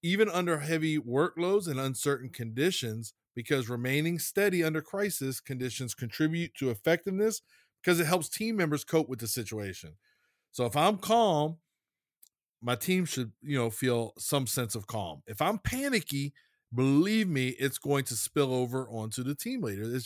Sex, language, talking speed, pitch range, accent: male, English, 160 wpm, 120-160 Hz, American